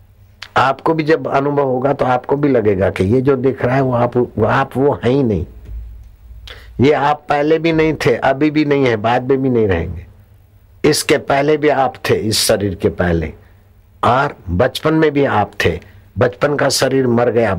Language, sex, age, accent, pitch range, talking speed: Hindi, male, 60-79, native, 95-125 Hz, 190 wpm